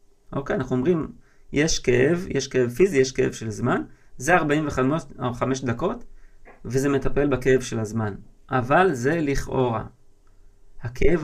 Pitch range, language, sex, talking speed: 125-165 Hz, Hebrew, male, 140 wpm